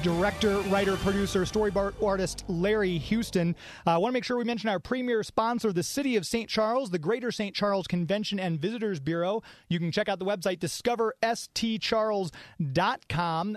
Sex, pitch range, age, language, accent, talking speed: male, 180-215 Hz, 30-49, English, American, 165 wpm